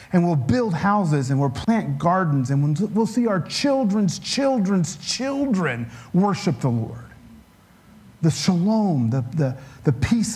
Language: English